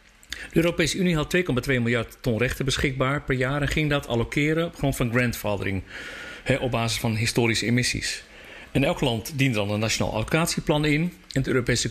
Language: Dutch